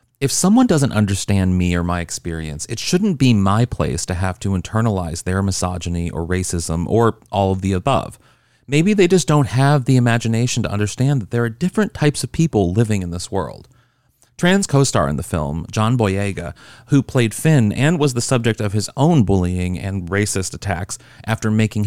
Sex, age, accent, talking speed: male, 30-49, American, 190 wpm